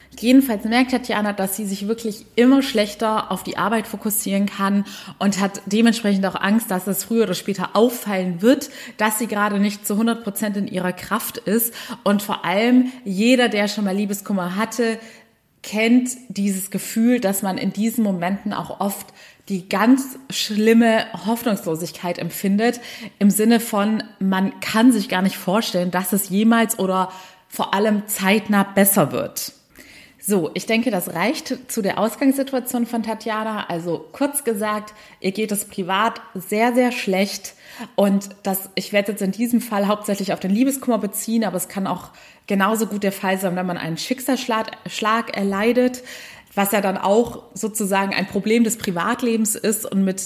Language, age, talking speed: German, 20-39, 165 wpm